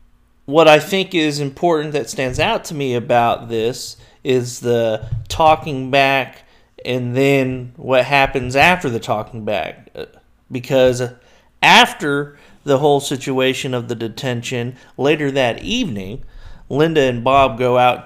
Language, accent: English, American